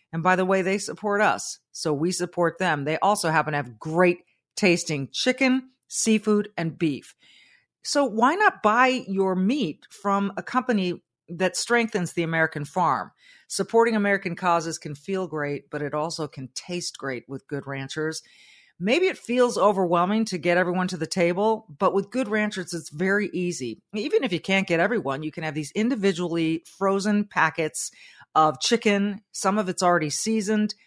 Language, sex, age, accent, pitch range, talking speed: English, female, 40-59, American, 160-210 Hz, 170 wpm